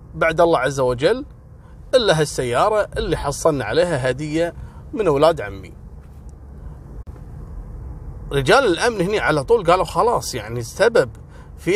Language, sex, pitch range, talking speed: Arabic, male, 90-155 Hz, 115 wpm